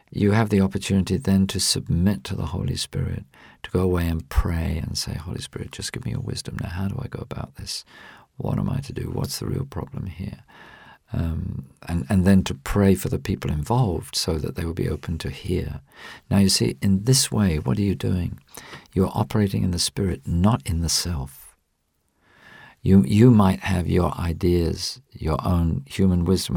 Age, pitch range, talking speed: 50-69, 80-100 Hz, 200 wpm